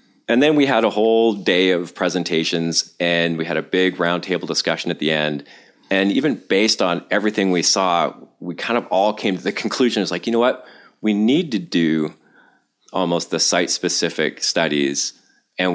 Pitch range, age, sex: 80-95 Hz, 30-49, male